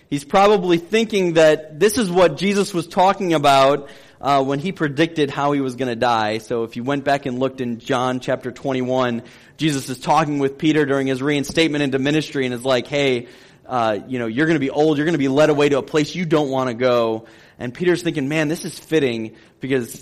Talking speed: 230 wpm